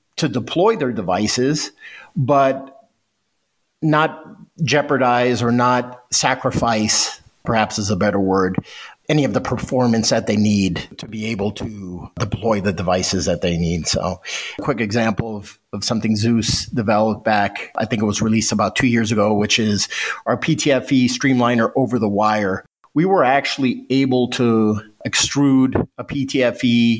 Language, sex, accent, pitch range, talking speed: English, male, American, 110-135 Hz, 150 wpm